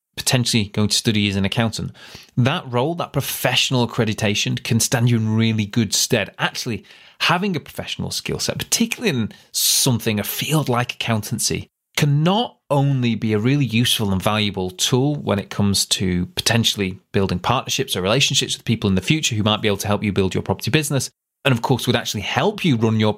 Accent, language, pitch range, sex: British, English, 105-135 Hz, male